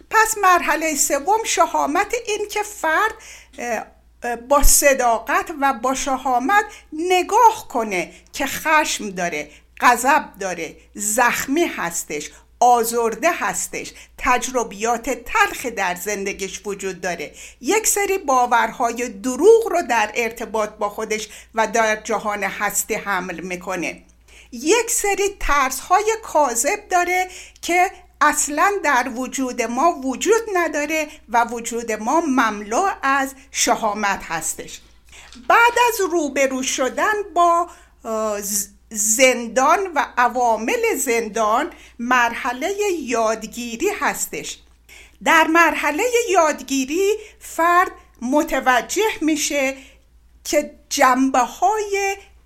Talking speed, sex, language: 95 wpm, female, Persian